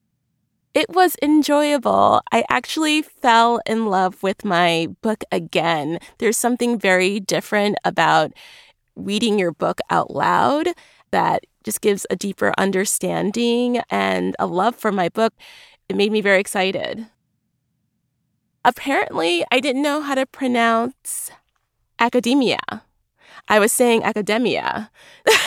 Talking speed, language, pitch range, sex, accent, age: 120 wpm, English, 180-235 Hz, female, American, 20-39